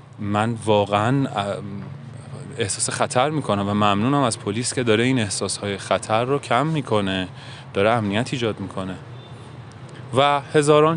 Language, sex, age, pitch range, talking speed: Persian, male, 30-49, 125-155 Hz, 125 wpm